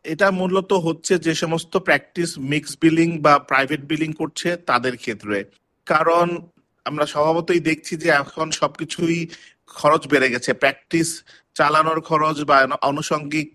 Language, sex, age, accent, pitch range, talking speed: Bengali, male, 50-69, native, 150-175 Hz, 130 wpm